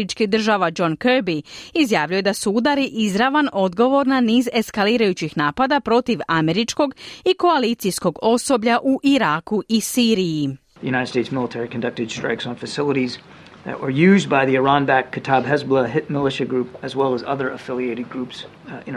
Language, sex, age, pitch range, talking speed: Croatian, female, 40-59, 170-250 Hz, 145 wpm